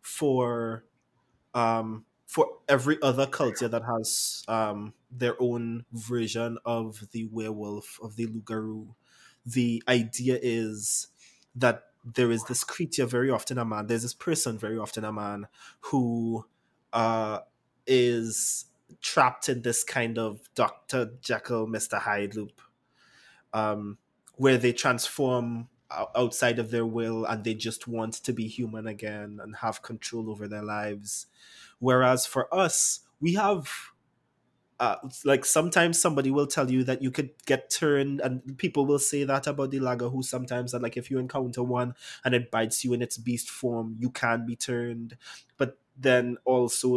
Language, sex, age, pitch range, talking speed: English, male, 20-39, 115-130 Hz, 155 wpm